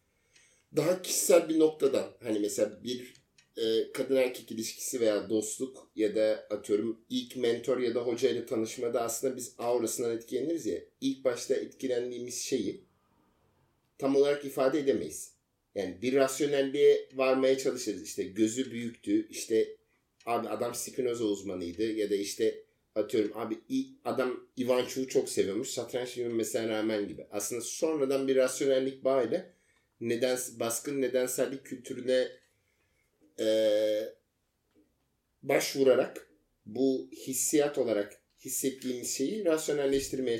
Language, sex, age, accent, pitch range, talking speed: Turkish, male, 50-69, native, 115-155 Hz, 120 wpm